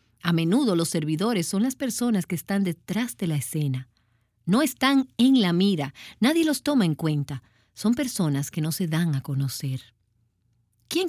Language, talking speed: Spanish, 175 wpm